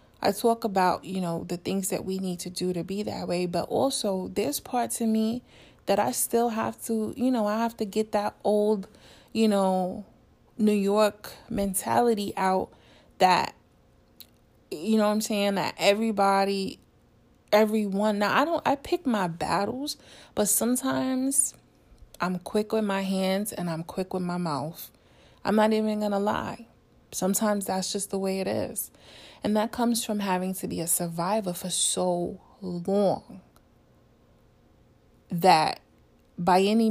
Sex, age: female, 20-39